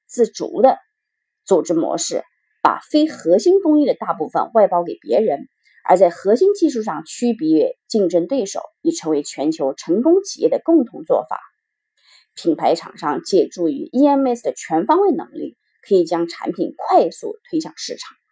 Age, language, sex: 30-49, Chinese, female